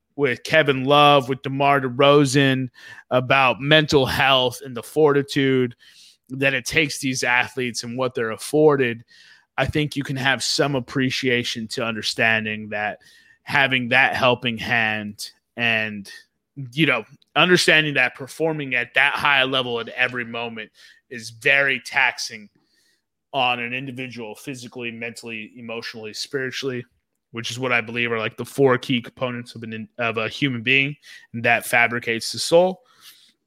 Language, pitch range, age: English, 120-145 Hz, 20-39